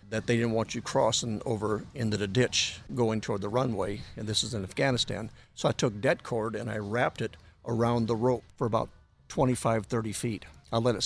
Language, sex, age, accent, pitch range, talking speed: English, male, 50-69, American, 100-120 Hz, 210 wpm